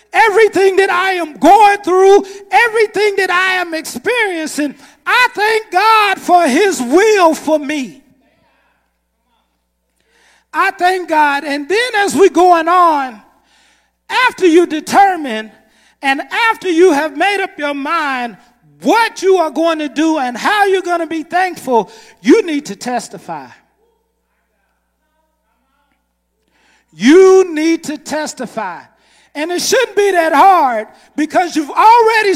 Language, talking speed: English, 130 wpm